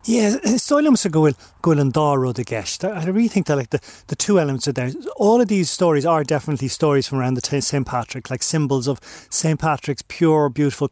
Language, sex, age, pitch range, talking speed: English, male, 30-49, 130-160 Hz, 190 wpm